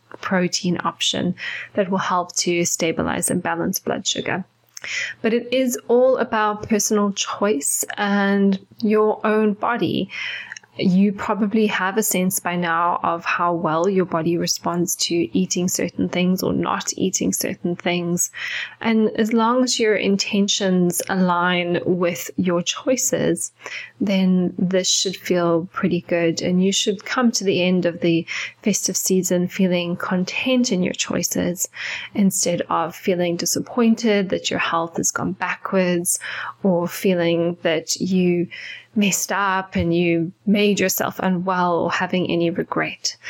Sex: female